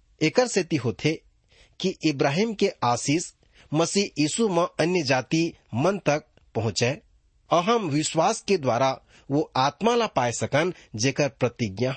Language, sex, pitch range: English, male, 115-175 Hz